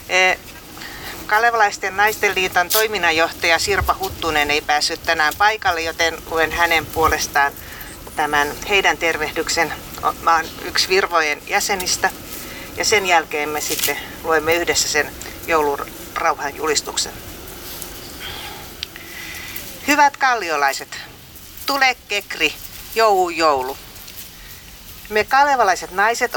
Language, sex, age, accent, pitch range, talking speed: Finnish, female, 40-59, native, 155-215 Hz, 90 wpm